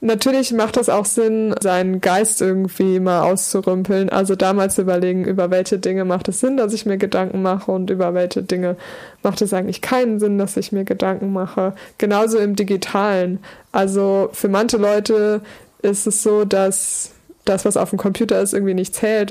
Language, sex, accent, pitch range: German, female, German, 195-220 Hz